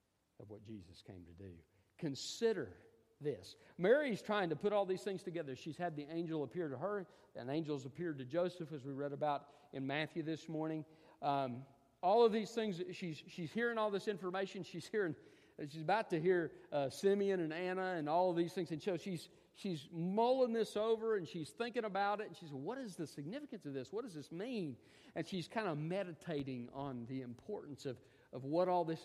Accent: American